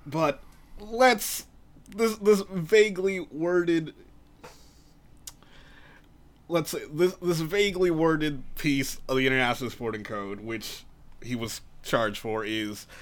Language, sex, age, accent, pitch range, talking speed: English, male, 20-39, American, 120-180 Hz, 110 wpm